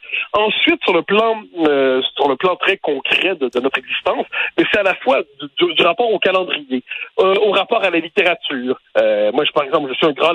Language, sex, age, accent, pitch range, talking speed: French, male, 60-79, French, 165-235 Hz, 225 wpm